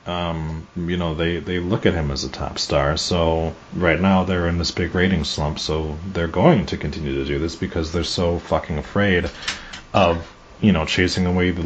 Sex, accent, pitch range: male, American, 85-100 Hz